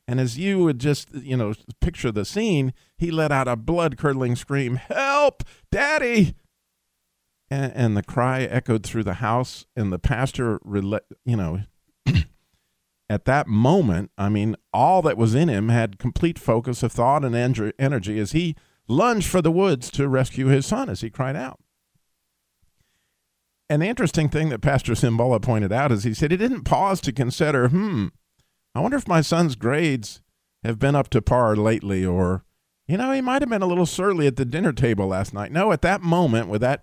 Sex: male